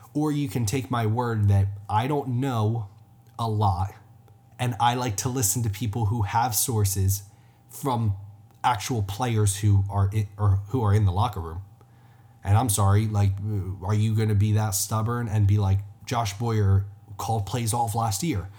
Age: 20-39